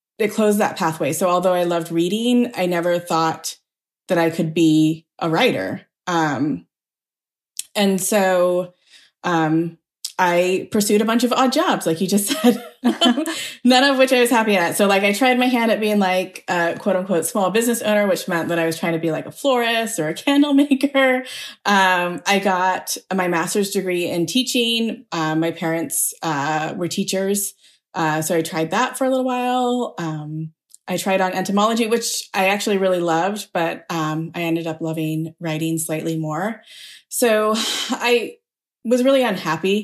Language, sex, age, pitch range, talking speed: English, female, 20-39, 165-220 Hz, 175 wpm